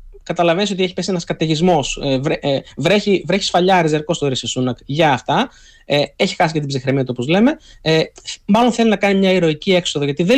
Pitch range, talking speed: 140-200 Hz, 190 wpm